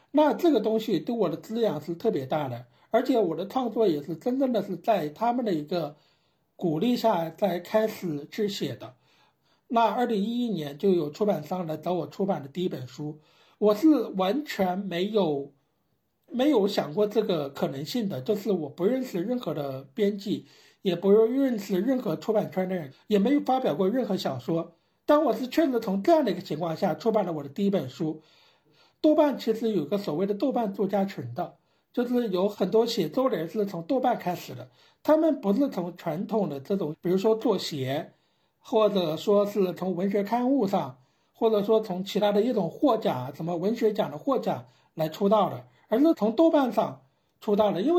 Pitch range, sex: 175-235 Hz, male